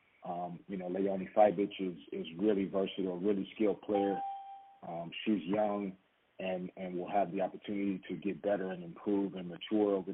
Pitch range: 90-100 Hz